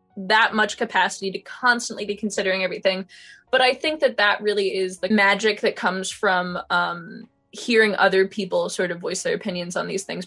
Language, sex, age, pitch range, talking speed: English, female, 10-29, 190-240 Hz, 185 wpm